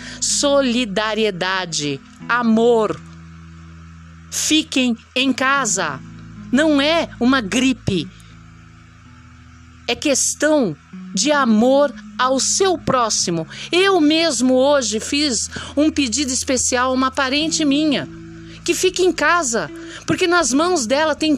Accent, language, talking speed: Brazilian, Portuguese, 100 wpm